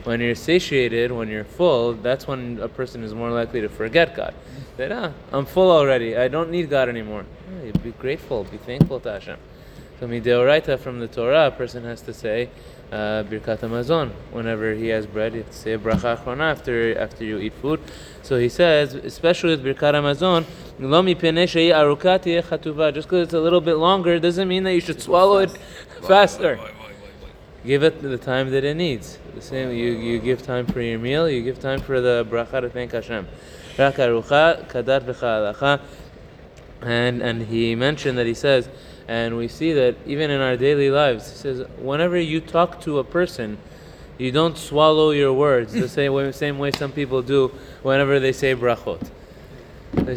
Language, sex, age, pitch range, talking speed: English, male, 20-39, 120-160 Hz, 175 wpm